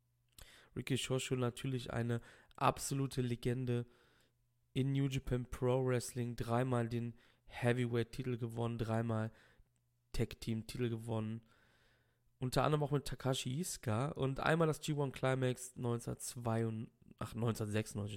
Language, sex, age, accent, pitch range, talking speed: German, male, 20-39, German, 120-150 Hz, 110 wpm